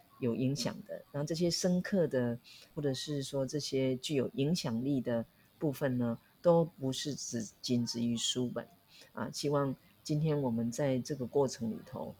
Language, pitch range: Chinese, 120-145 Hz